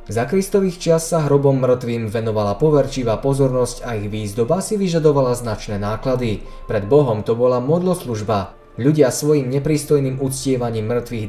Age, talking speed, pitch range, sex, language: 20-39, 140 wpm, 115-155 Hz, male, Slovak